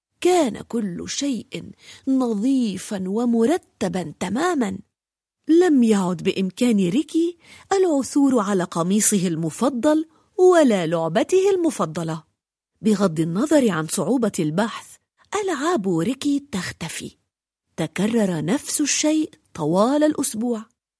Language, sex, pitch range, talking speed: French, female, 185-300 Hz, 85 wpm